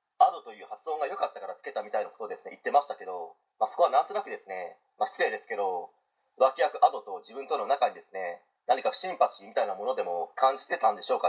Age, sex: 30-49, male